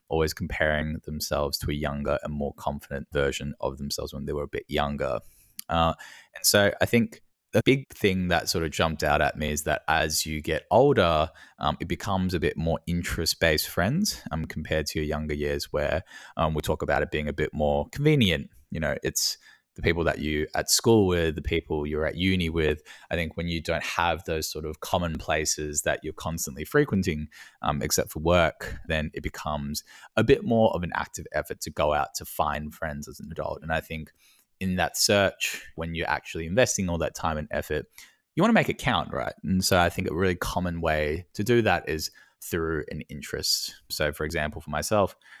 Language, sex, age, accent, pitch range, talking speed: English, male, 20-39, Australian, 75-95 Hz, 210 wpm